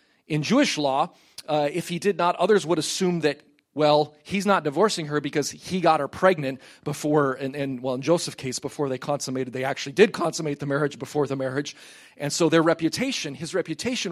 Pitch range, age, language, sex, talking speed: 135-175 Hz, 30-49, English, male, 200 wpm